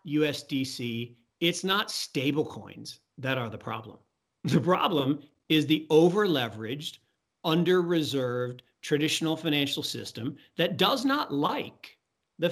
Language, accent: English, American